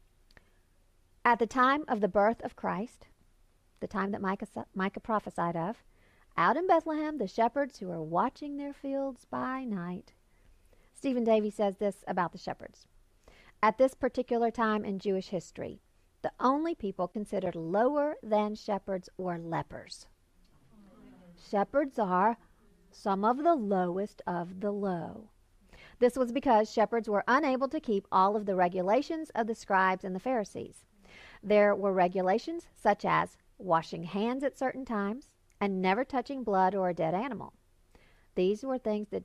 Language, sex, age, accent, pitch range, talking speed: English, female, 50-69, American, 175-245 Hz, 150 wpm